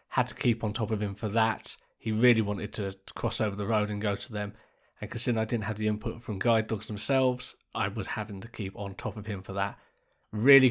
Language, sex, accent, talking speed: English, male, British, 245 wpm